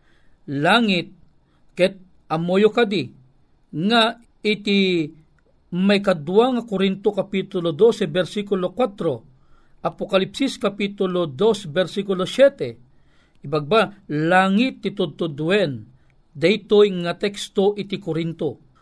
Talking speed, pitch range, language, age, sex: 85 wpm, 165-205 Hz, Filipino, 50-69, male